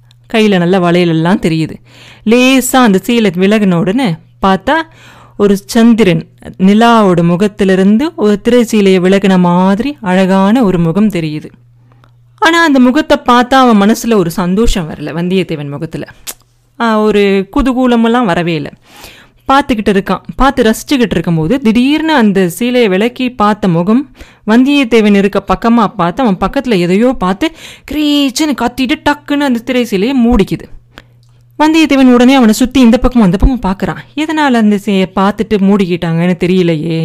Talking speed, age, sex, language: 125 wpm, 30-49, female, Tamil